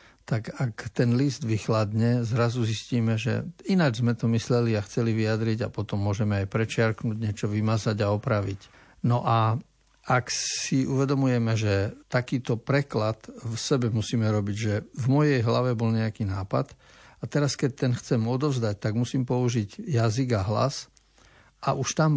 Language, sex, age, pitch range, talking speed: Slovak, male, 50-69, 110-130 Hz, 155 wpm